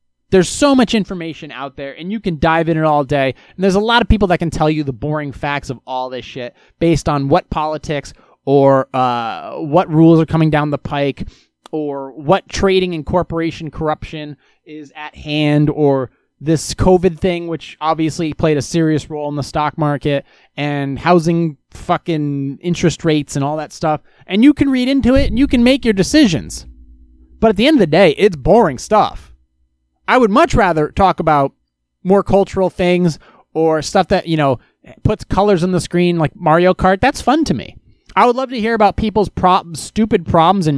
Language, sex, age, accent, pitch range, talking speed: English, male, 20-39, American, 145-195 Hz, 200 wpm